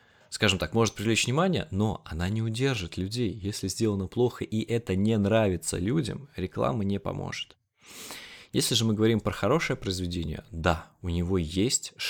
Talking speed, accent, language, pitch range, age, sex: 160 wpm, native, Russian, 90-110 Hz, 20-39, male